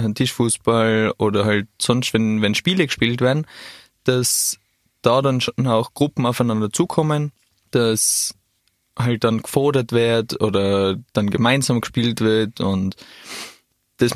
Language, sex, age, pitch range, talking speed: German, male, 20-39, 110-130 Hz, 120 wpm